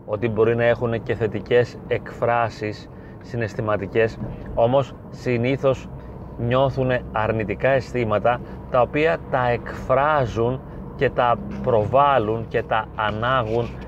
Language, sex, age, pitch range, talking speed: Greek, male, 30-49, 110-130 Hz, 100 wpm